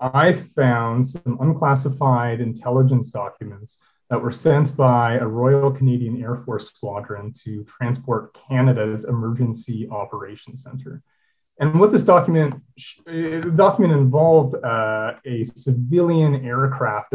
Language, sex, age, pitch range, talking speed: English, male, 30-49, 120-150 Hz, 115 wpm